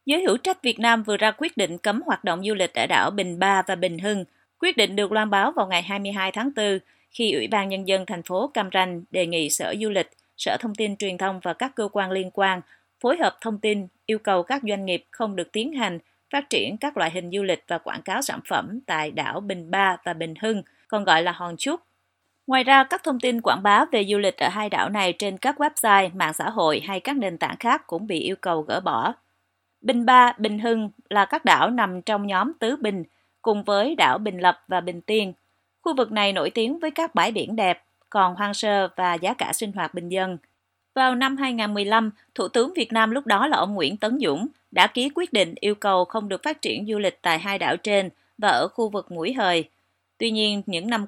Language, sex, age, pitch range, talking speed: Vietnamese, female, 30-49, 180-230 Hz, 240 wpm